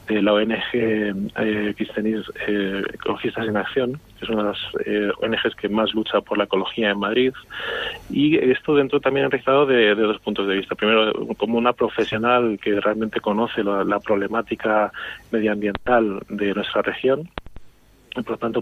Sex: male